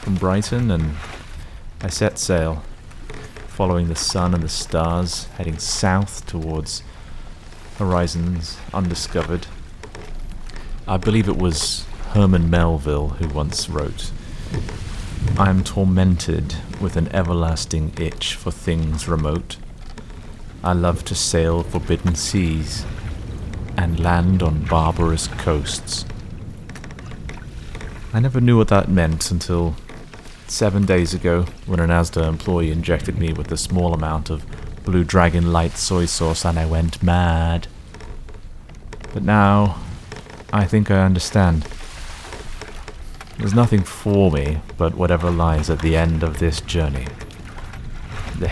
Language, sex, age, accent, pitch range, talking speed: English, male, 30-49, British, 80-100 Hz, 120 wpm